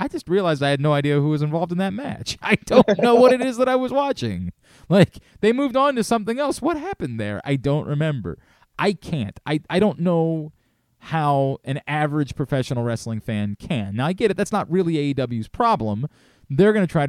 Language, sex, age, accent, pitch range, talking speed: English, male, 20-39, American, 125-165 Hz, 220 wpm